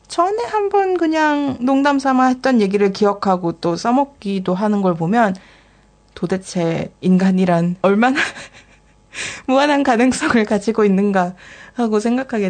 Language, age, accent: Korean, 20-39, native